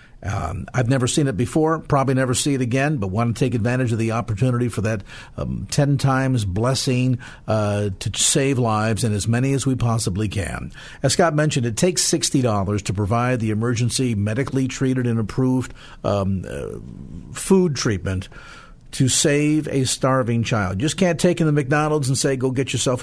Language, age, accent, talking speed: English, 50-69, American, 185 wpm